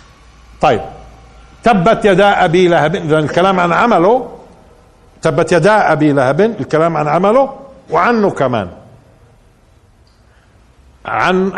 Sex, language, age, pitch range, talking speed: male, Arabic, 50-69, 120-170 Hz, 95 wpm